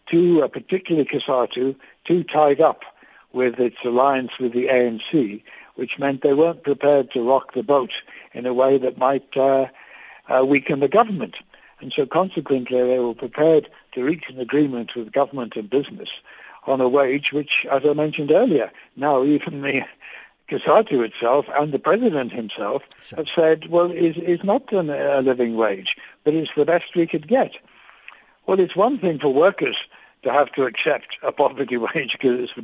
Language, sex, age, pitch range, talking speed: English, male, 60-79, 130-160 Hz, 175 wpm